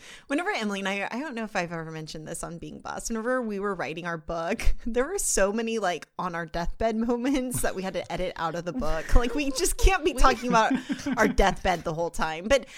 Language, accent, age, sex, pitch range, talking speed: English, American, 20-39, female, 170-220 Hz, 245 wpm